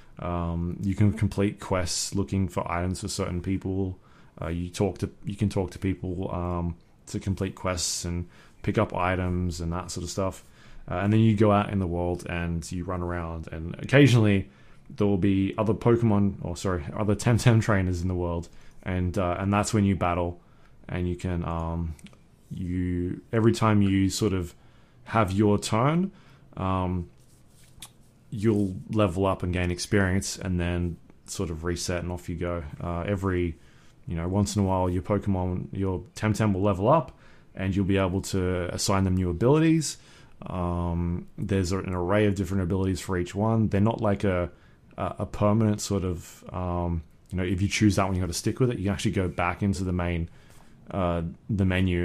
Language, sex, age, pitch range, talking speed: English, male, 20-39, 90-100 Hz, 190 wpm